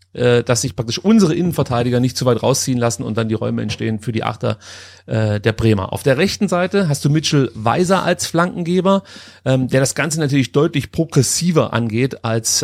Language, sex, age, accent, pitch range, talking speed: German, male, 30-49, German, 125-165 Hz, 190 wpm